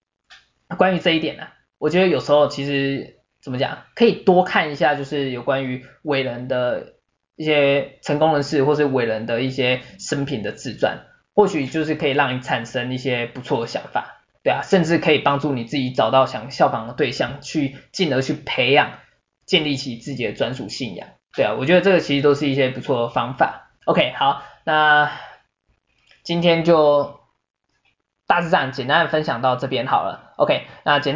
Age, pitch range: 20-39, 130-160 Hz